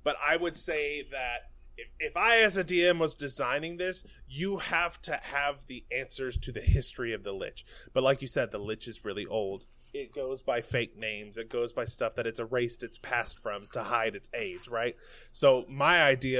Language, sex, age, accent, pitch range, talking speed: English, male, 20-39, American, 120-160 Hz, 210 wpm